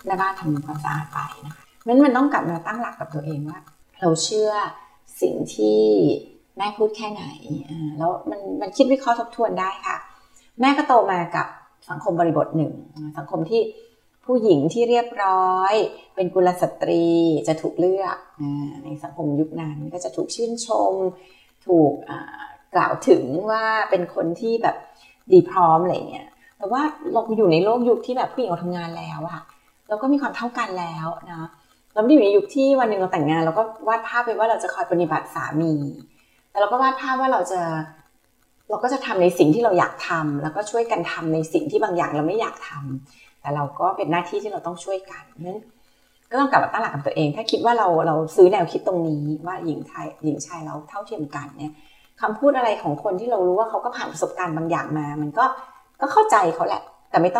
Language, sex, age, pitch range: Thai, female, 30-49, 160-230 Hz